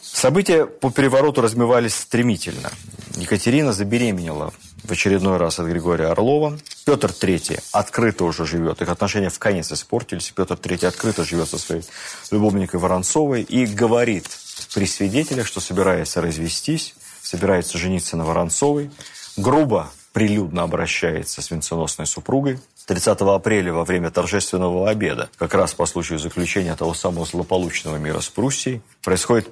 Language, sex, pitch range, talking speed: Russian, male, 90-115 Hz, 135 wpm